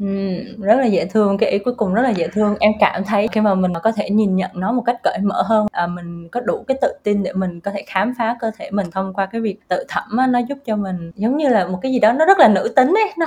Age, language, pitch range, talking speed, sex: 20-39, Vietnamese, 190-235 Hz, 320 wpm, female